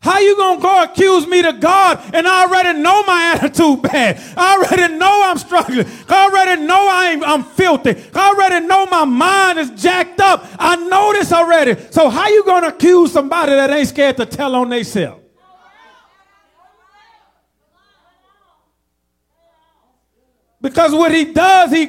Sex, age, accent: male, 40-59, American